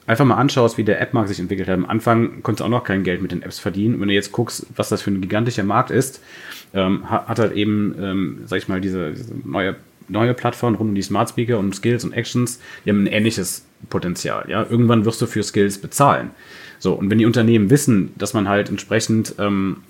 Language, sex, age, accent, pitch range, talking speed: German, male, 30-49, German, 100-120 Hz, 235 wpm